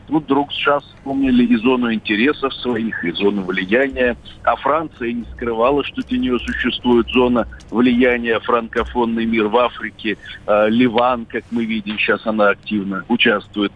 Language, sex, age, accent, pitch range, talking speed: Russian, male, 50-69, native, 115-135 Hz, 145 wpm